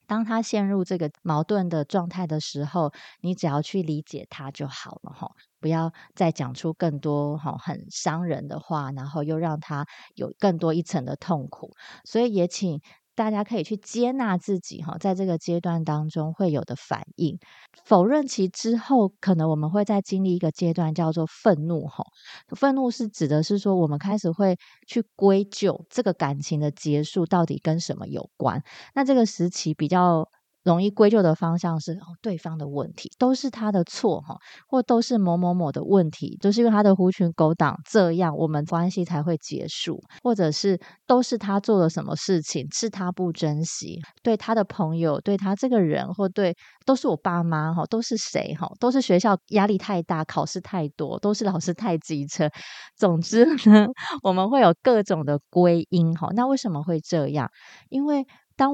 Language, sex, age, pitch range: Chinese, female, 30-49, 160-205 Hz